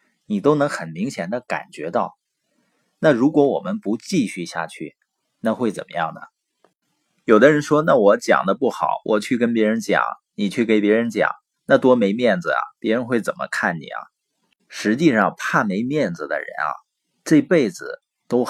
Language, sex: Chinese, male